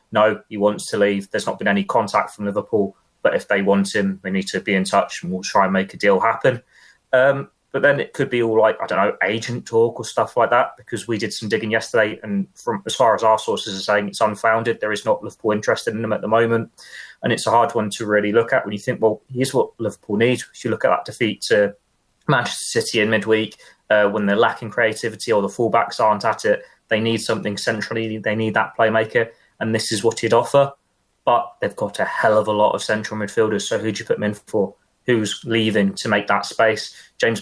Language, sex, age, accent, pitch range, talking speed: English, male, 20-39, British, 105-115 Hz, 245 wpm